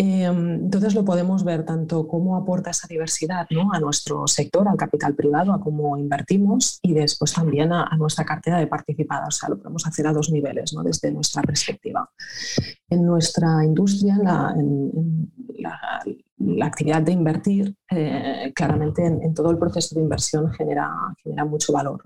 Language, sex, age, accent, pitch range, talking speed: Spanish, female, 30-49, Spanish, 150-180 Hz, 175 wpm